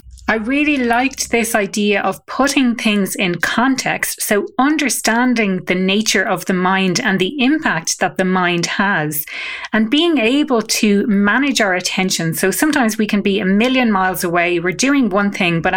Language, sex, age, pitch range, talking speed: English, female, 30-49, 185-235 Hz, 170 wpm